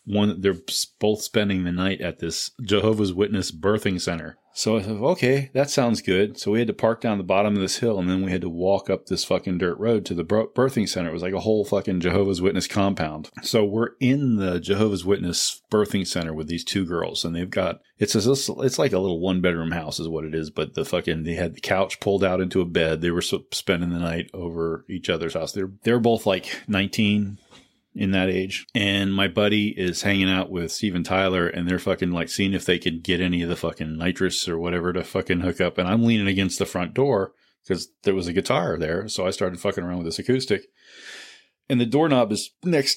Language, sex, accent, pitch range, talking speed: English, male, American, 90-105 Hz, 230 wpm